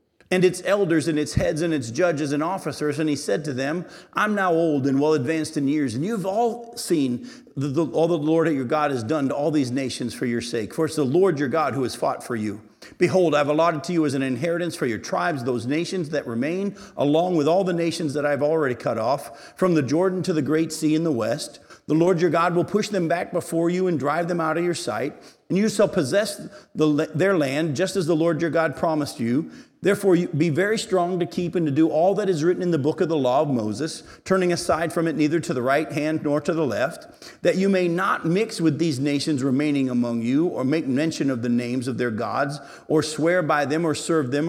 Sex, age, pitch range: male, 50-69, 150-180 Hz